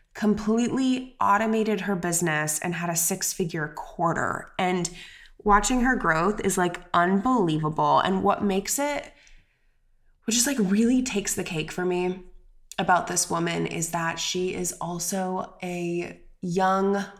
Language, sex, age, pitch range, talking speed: English, female, 20-39, 175-210 Hz, 140 wpm